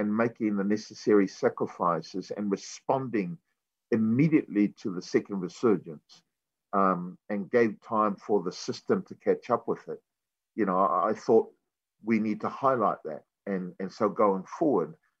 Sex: male